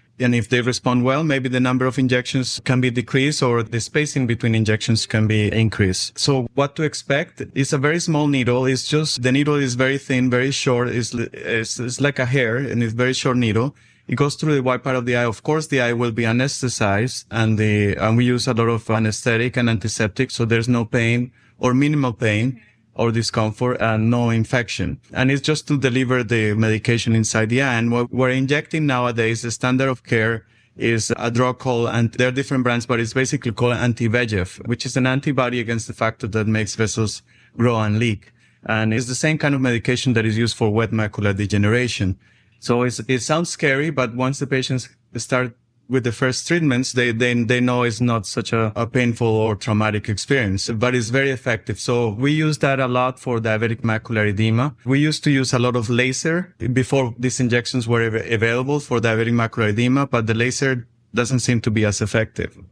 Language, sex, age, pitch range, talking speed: English, male, 30-49, 115-130 Hz, 205 wpm